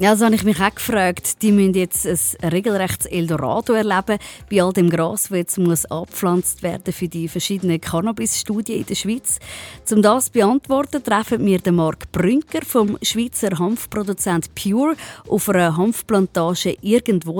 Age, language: 20-39, German